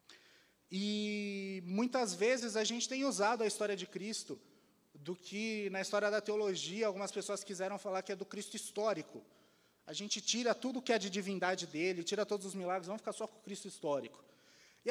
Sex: male